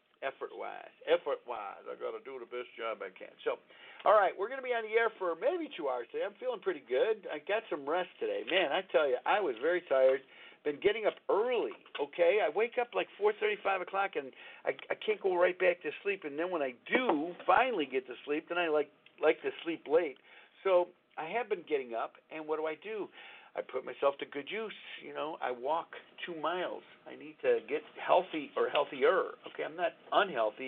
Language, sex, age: English, male, 50-69